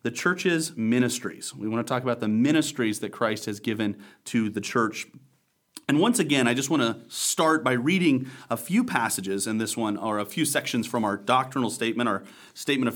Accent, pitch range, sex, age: American, 110-135 Hz, male, 30-49